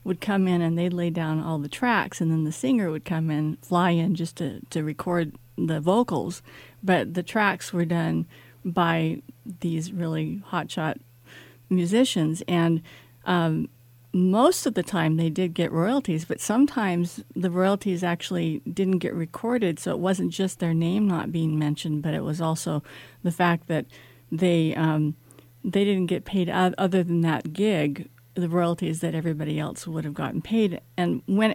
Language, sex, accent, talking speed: English, female, American, 170 wpm